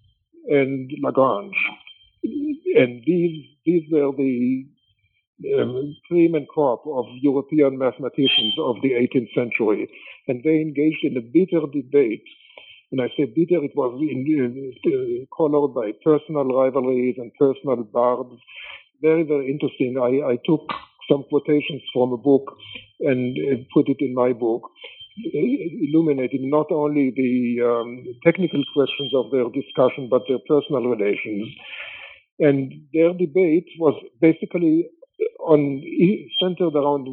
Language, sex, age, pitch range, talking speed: English, male, 60-79, 130-160 Hz, 125 wpm